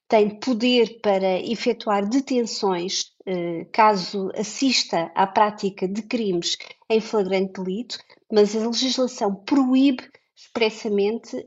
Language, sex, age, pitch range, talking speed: Portuguese, female, 20-39, 210-250 Hz, 105 wpm